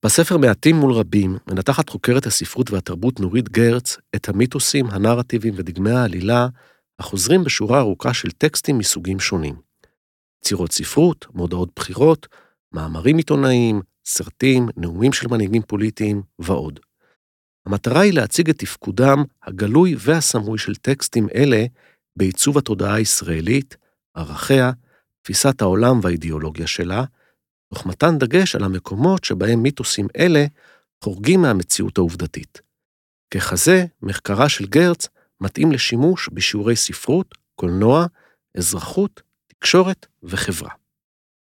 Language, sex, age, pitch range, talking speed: Hebrew, male, 50-69, 95-135 Hz, 110 wpm